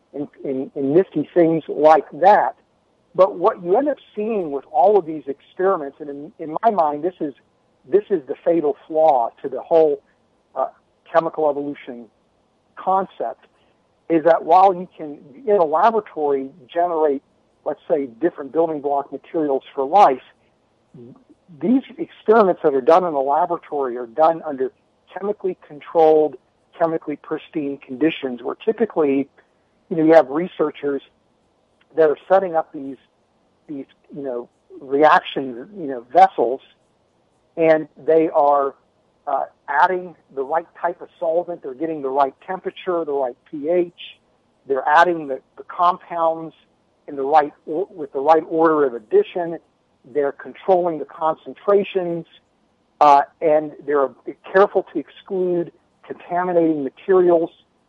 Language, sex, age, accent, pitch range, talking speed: English, male, 60-79, American, 145-185 Hz, 140 wpm